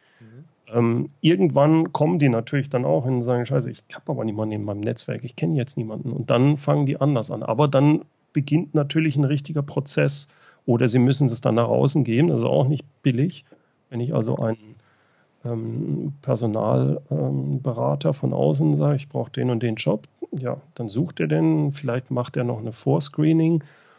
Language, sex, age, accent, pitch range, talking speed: German, male, 40-59, German, 120-150 Hz, 190 wpm